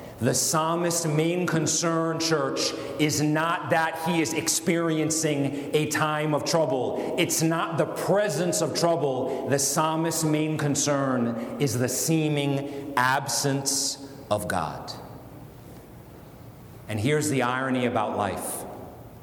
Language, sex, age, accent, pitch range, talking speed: English, male, 40-59, American, 115-155 Hz, 115 wpm